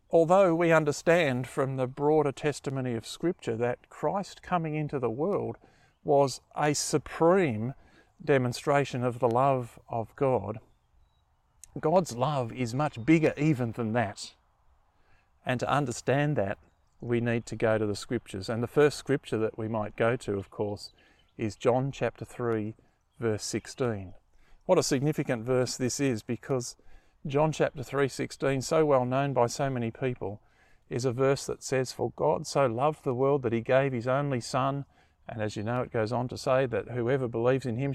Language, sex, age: English, male, 50-69